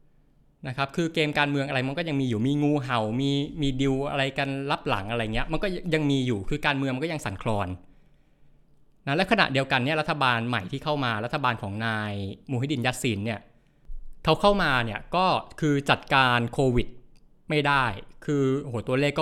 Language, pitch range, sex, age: Thai, 115-145 Hz, male, 20-39